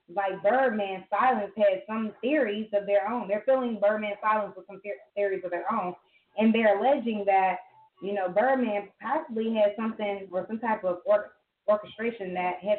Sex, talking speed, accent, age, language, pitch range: female, 170 wpm, American, 20-39, English, 185-225 Hz